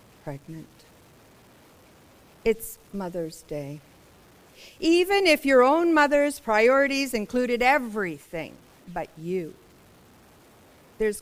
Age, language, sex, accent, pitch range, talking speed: 50-69, English, female, American, 205-275 Hz, 80 wpm